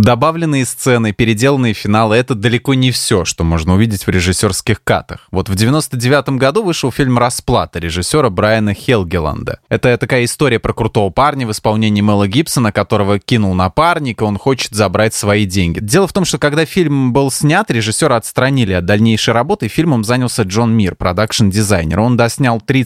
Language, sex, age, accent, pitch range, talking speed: Russian, male, 20-39, native, 105-135 Hz, 170 wpm